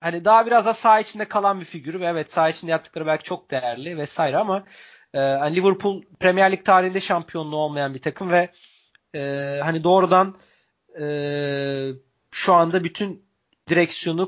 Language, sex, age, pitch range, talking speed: Turkish, male, 30-49, 150-185 Hz, 155 wpm